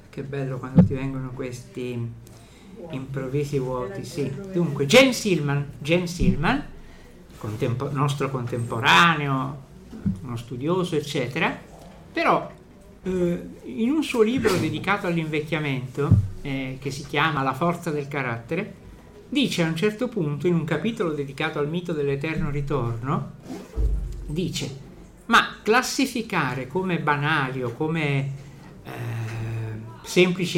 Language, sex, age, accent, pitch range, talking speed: Italian, male, 50-69, native, 140-180 Hz, 105 wpm